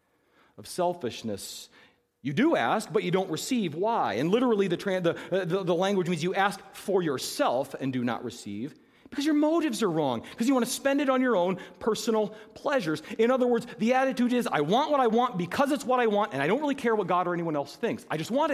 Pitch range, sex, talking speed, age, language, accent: 190-260 Hz, male, 230 wpm, 40-59, English, American